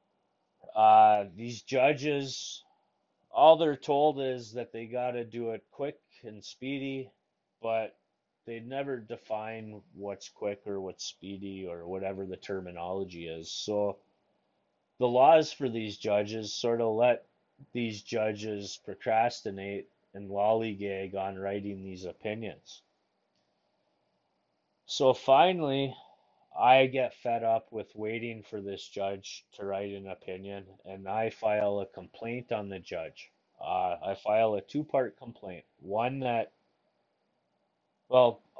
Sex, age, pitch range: male, 30-49, 100-125 Hz